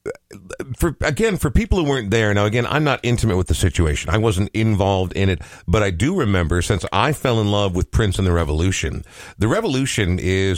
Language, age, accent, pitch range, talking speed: English, 50-69, American, 90-115 Hz, 210 wpm